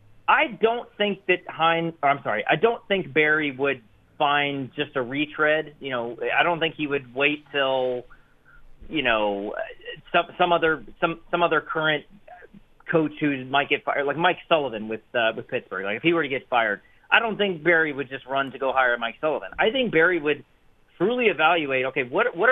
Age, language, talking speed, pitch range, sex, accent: 40-59, English, 195 wpm, 135-170 Hz, male, American